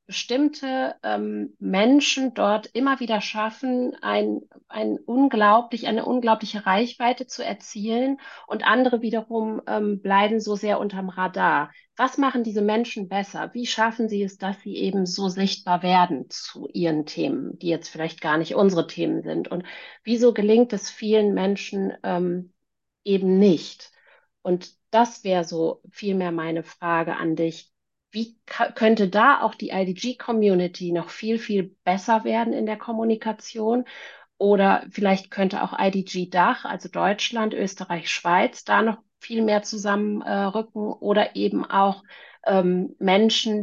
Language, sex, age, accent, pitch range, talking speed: German, female, 40-59, German, 190-230 Hz, 140 wpm